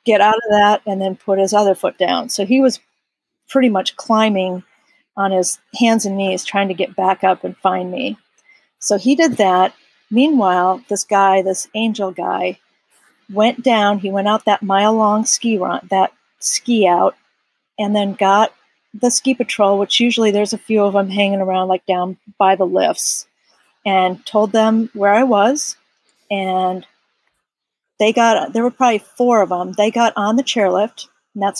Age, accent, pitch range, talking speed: 40-59, American, 195-230 Hz, 180 wpm